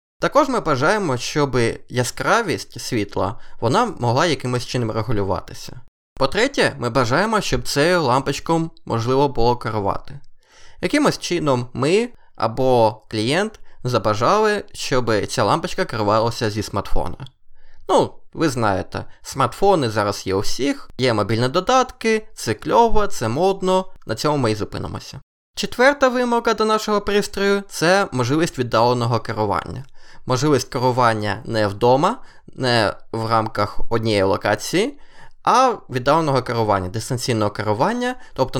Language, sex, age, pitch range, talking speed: Ukrainian, male, 20-39, 115-180 Hz, 120 wpm